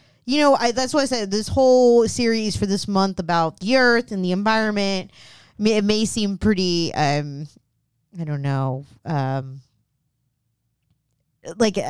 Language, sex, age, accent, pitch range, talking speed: English, female, 20-39, American, 150-190 Hz, 155 wpm